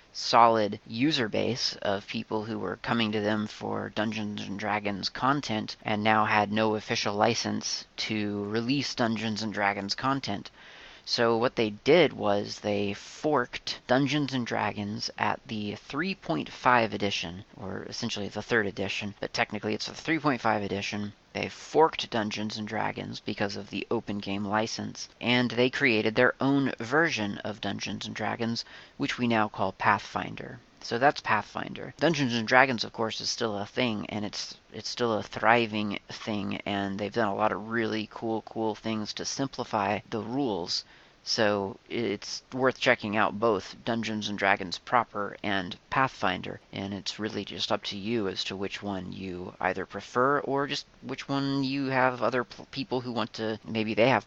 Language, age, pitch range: English, 30-49, 105-120 Hz